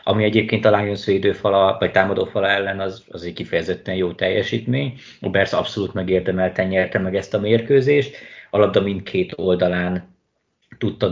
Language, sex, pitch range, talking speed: Hungarian, male, 90-105 Hz, 135 wpm